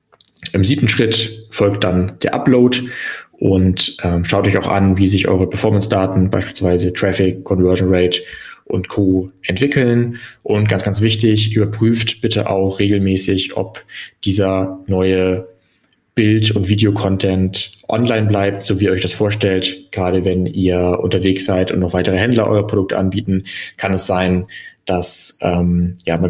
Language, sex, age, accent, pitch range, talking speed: German, male, 20-39, German, 95-105 Hz, 150 wpm